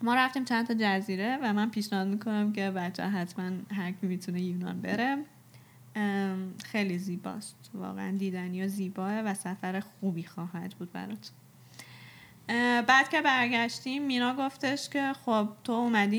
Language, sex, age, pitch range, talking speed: Persian, female, 10-29, 195-250 Hz, 145 wpm